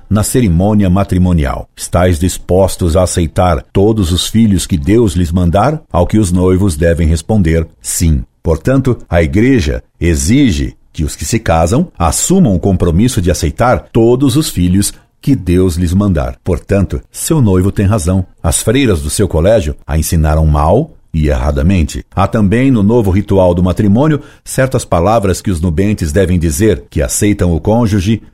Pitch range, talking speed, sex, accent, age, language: 85-115 Hz, 160 wpm, male, Brazilian, 50-69, Portuguese